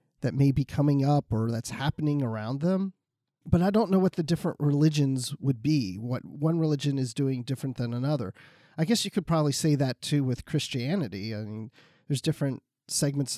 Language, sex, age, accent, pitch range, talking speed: English, male, 40-59, American, 125-160 Hz, 195 wpm